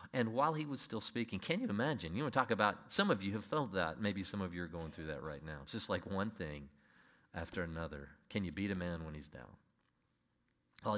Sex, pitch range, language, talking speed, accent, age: male, 75-110 Hz, English, 255 wpm, American, 40-59